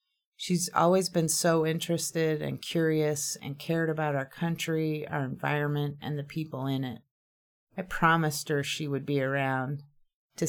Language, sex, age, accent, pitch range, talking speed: English, female, 30-49, American, 140-165 Hz, 155 wpm